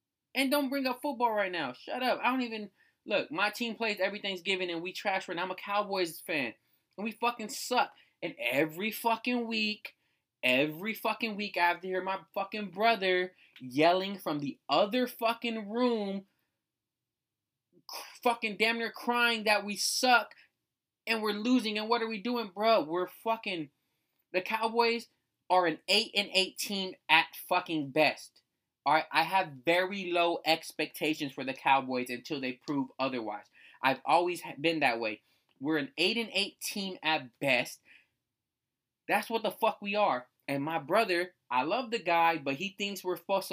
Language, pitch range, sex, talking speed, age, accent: English, 155-230 Hz, male, 165 wpm, 20-39, American